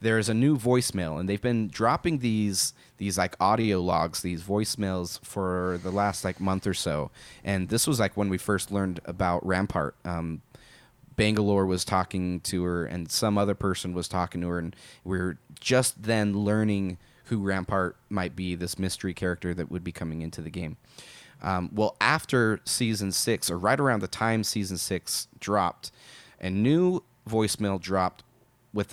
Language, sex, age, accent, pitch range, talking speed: English, male, 30-49, American, 95-120 Hz, 175 wpm